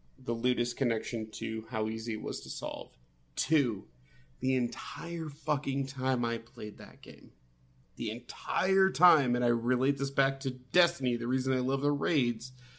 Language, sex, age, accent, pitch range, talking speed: English, male, 30-49, American, 115-145 Hz, 165 wpm